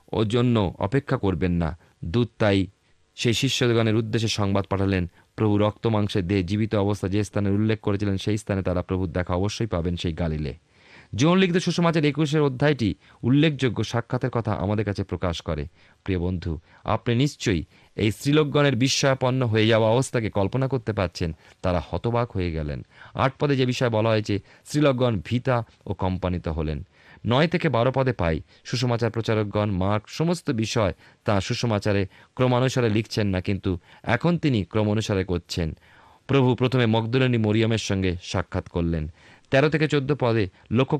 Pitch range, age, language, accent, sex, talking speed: 95-125 Hz, 30-49, Bengali, native, male, 120 wpm